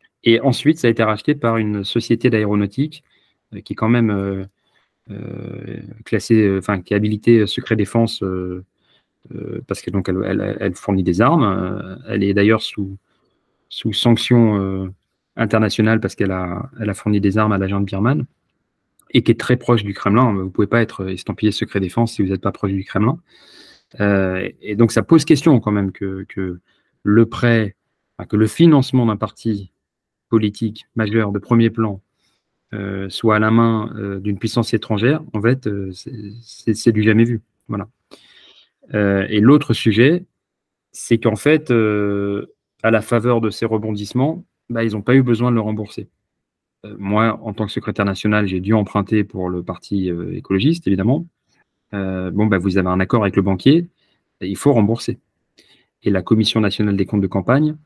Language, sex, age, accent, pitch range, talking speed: French, male, 30-49, French, 100-115 Hz, 175 wpm